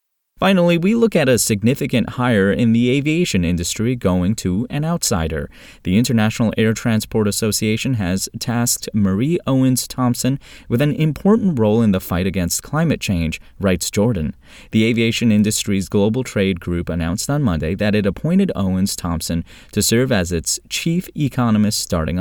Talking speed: 150 wpm